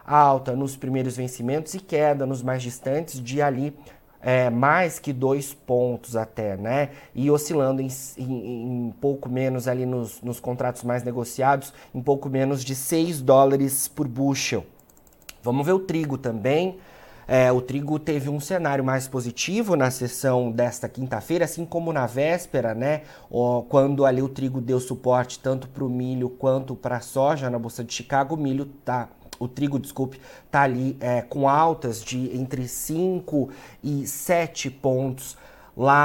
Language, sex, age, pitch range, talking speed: Portuguese, male, 30-49, 125-145 Hz, 160 wpm